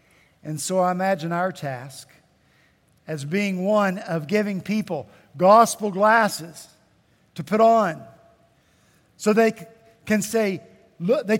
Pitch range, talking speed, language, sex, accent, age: 165-230 Hz, 115 wpm, English, male, American, 50-69